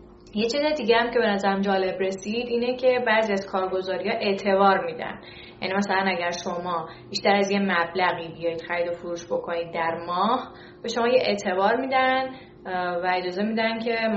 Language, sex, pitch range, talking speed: Persian, female, 180-225 Hz, 170 wpm